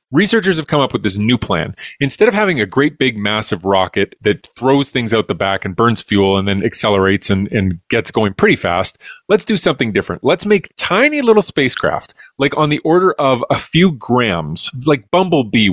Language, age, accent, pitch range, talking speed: English, 30-49, American, 110-160 Hz, 200 wpm